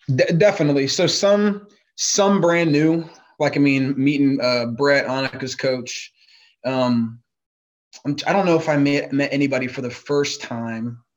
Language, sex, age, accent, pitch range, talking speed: English, male, 20-39, American, 120-145 Hz, 160 wpm